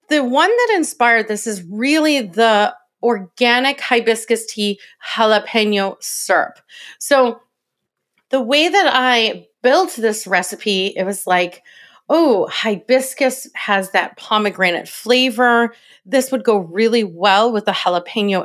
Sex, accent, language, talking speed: female, American, English, 125 wpm